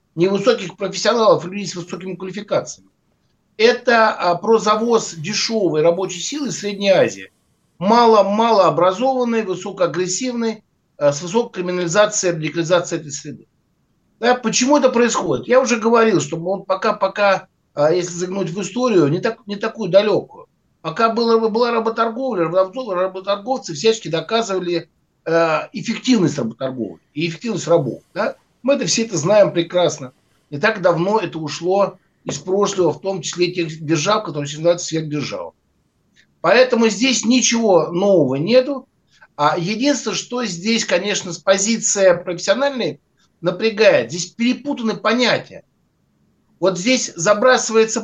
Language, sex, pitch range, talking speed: Russian, male, 175-230 Hz, 125 wpm